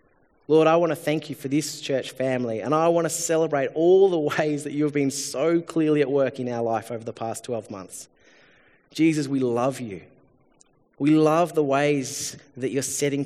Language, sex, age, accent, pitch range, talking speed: English, male, 30-49, Australian, 110-140 Hz, 200 wpm